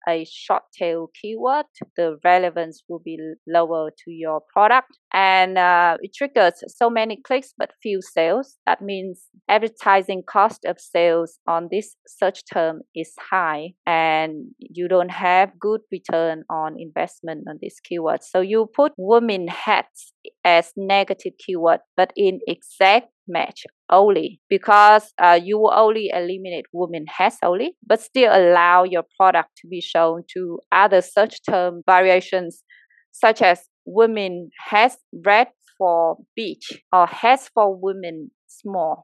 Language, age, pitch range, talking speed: English, 20-39, 165-205 Hz, 140 wpm